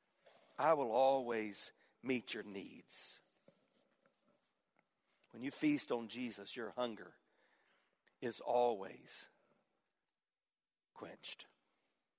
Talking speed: 80 wpm